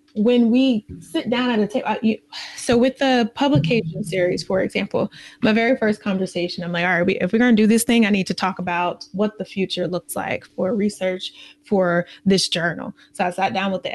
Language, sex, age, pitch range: English, female, 20-39, 190-230 Hz